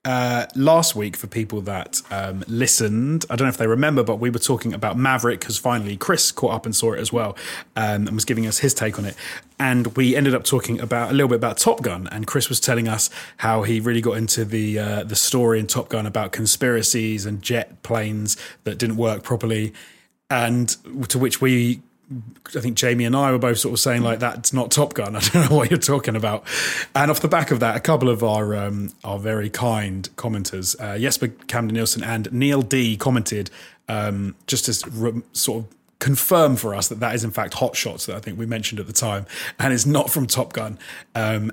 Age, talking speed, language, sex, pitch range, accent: 30-49, 225 wpm, English, male, 105-125 Hz, British